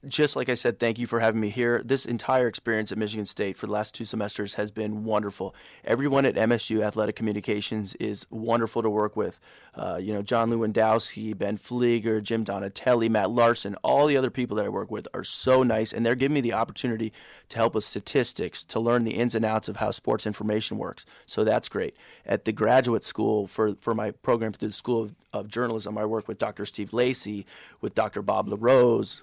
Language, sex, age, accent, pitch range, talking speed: English, male, 30-49, American, 110-125 Hz, 215 wpm